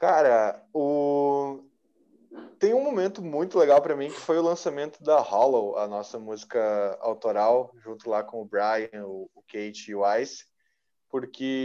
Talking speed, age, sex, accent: 155 wpm, 20-39, male, Brazilian